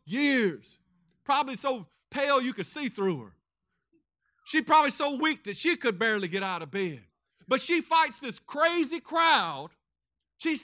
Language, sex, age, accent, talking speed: English, male, 50-69, American, 160 wpm